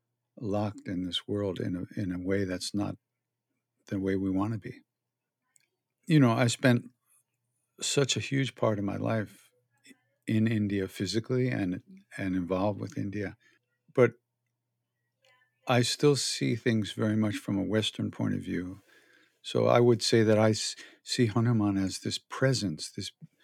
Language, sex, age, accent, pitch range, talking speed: English, male, 50-69, American, 100-120 Hz, 155 wpm